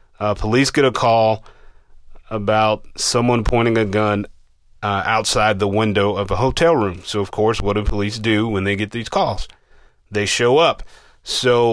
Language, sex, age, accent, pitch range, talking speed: English, male, 30-49, American, 100-110 Hz, 175 wpm